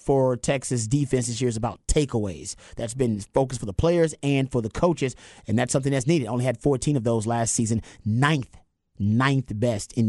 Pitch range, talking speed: 125-155 Hz, 200 wpm